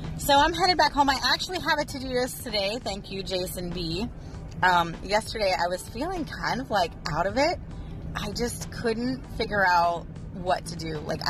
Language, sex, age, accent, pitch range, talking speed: English, female, 30-49, American, 170-230 Hz, 195 wpm